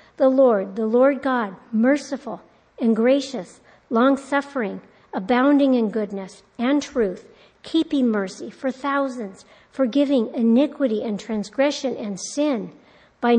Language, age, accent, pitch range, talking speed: English, 50-69, American, 230-280 Hz, 110 wpm